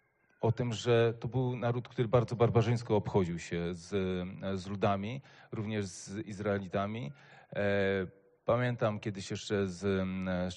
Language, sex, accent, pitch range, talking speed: Polish, male, native, 100-125 Hz, 125 wpm